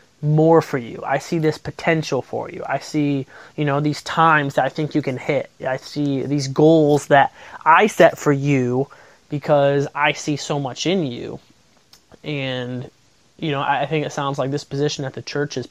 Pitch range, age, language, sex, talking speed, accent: 130-150 Hz, 20-39, English, male, 195 wpm, American